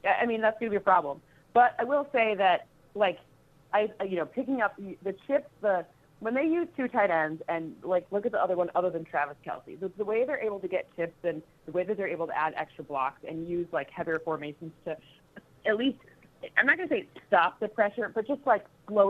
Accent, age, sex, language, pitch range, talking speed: American, 30-49, female, English, 155-195 Hz, 240 wpm